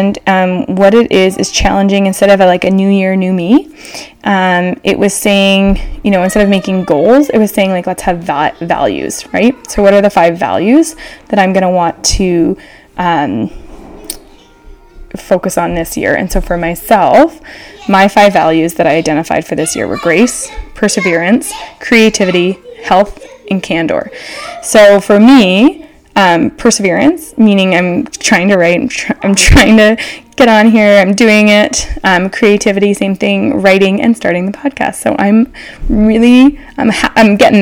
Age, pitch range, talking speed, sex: 10-29, 185-230 Hz, 170 wpm, female